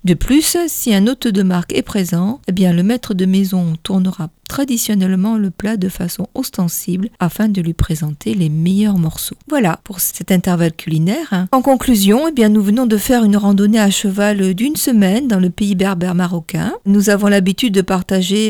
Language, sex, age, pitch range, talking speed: French, female, 50-69, 170-205 Hz, 190 wpm